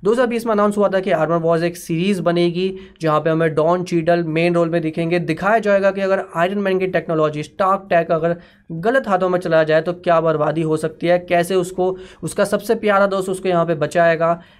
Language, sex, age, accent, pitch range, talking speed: Hindi, male, 20-39, native, 165-190 Hz, 215 wpm